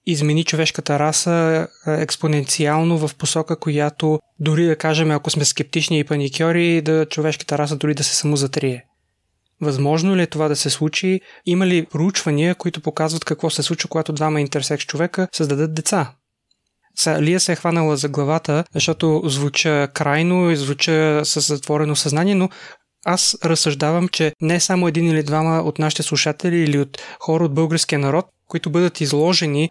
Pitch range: 150-170 Hz